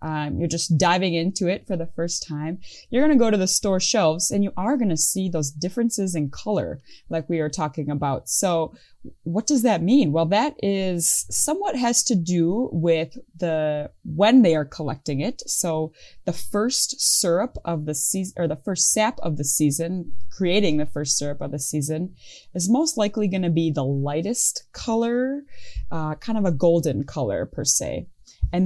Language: English